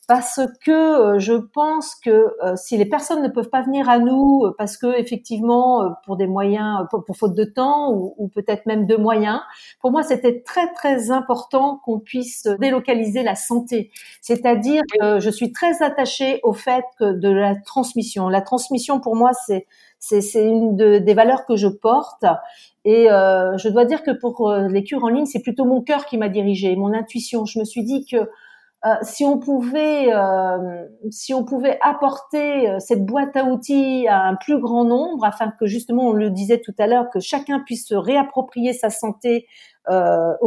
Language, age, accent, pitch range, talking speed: French, 50-69, French, 215-265 Hz, 190 wpm